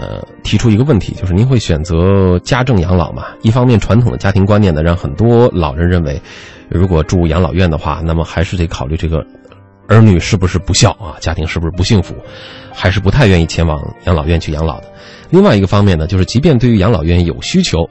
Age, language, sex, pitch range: 30-49, Chinese, male, 90-120 Hz